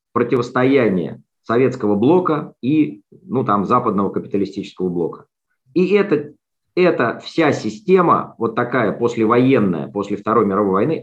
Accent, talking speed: native, 115 wpm